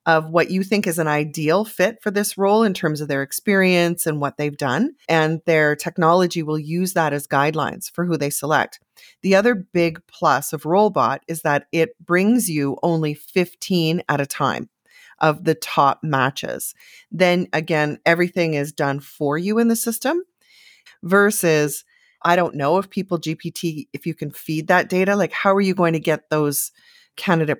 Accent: American